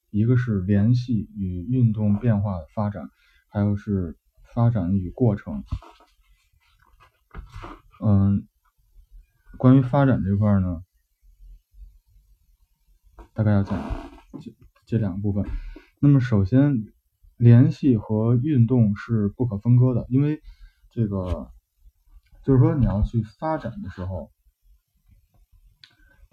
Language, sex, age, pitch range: Chinese, male, 20-39, 90-120 Hz